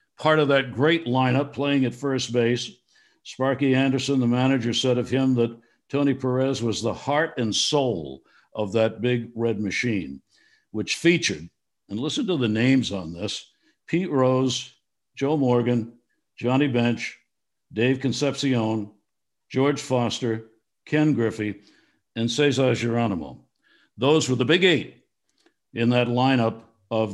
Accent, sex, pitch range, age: American, male, 110-135 Hz, 60-79